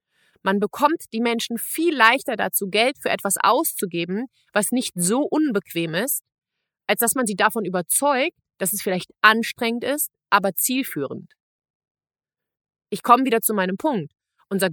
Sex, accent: female, German